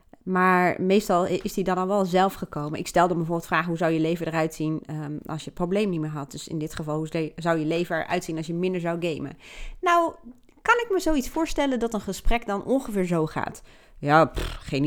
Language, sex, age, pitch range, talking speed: Dutch, female, 30-49, 160-210 Hz, 240 wpm